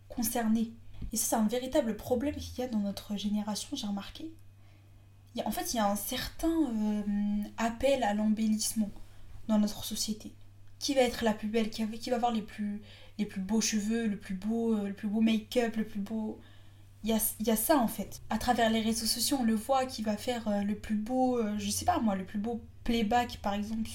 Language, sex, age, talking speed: French, female, 10-29, 230 wpm